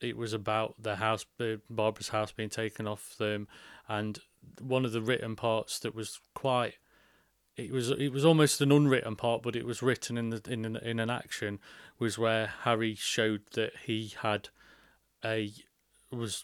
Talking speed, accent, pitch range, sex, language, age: 175 wpm, British, 105-120 Hz, male, English, 30-49